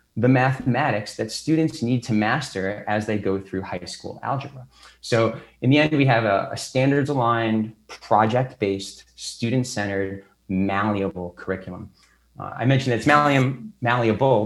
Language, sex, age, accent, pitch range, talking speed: English, male, 30-49, American, 105-130 Hz, 135 wpm